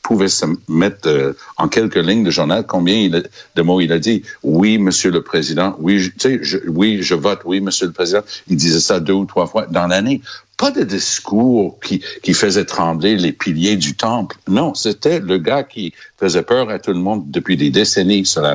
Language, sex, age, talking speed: French, male, 60-79, 225 wpm